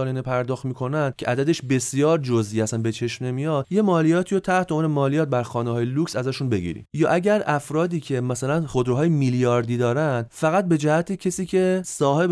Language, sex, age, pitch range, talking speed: Persian, male, 30-49, 115-150 Hz, 175 wpm